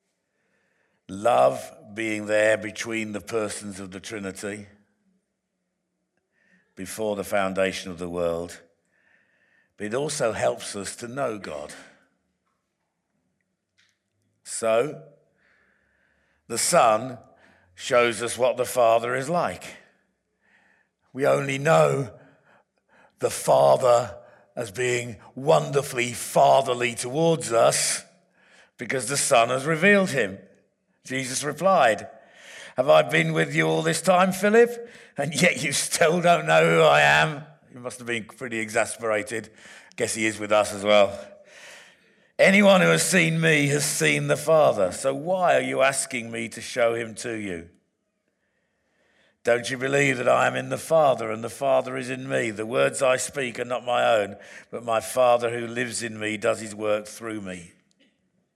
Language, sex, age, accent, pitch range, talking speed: English, male, 50-69, British, 105-140 Hz, 140 wpm